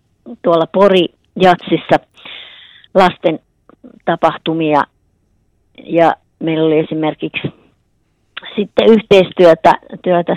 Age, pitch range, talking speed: 30-49, 165-200 Hz, 70 wpm